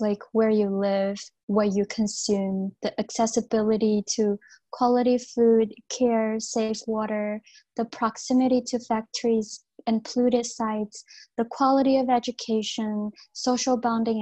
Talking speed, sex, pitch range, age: 120 wpm, female, 215-245 Hz, 20-39